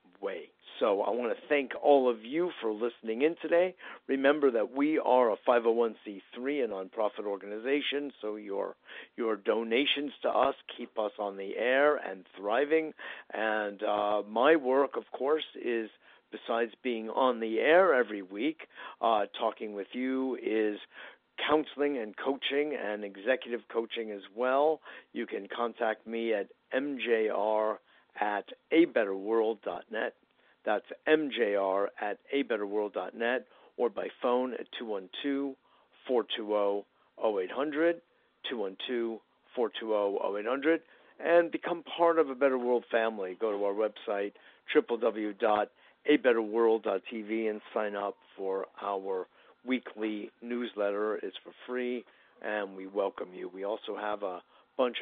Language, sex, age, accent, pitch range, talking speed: English, male, 50-69, American, 105-140 Hz, 125 wpm